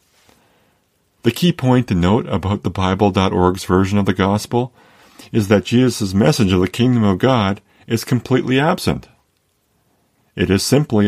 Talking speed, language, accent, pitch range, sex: 145 wpm, English, American, 95-120 Hz, male